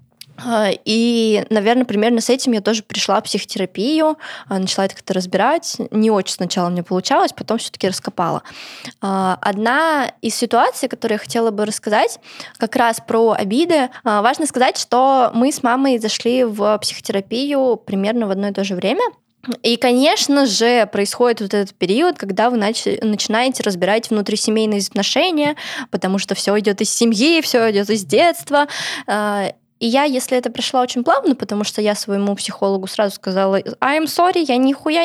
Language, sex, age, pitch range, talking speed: Russian, female, 20-39, 205-260 Hz, 155 wpm